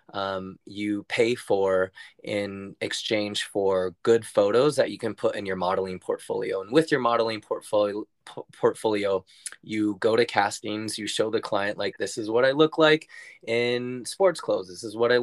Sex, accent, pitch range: male, American, 105-135 Hz